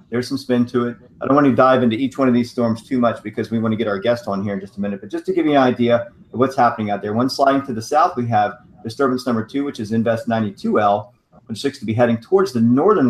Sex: male